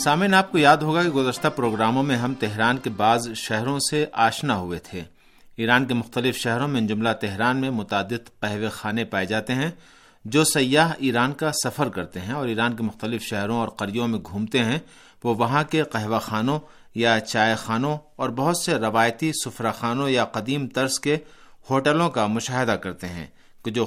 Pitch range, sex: 110-145 Hz, male